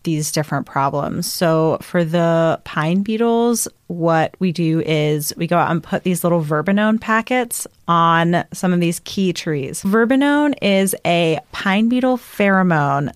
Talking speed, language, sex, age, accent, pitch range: 150 wpm, English, female, 30-49, American, 160-190 Hz